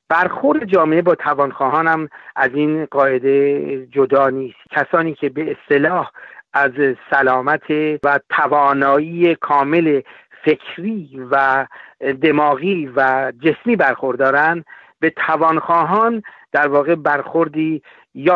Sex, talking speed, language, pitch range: male, 105 wpm, Persian, 140-175 Hz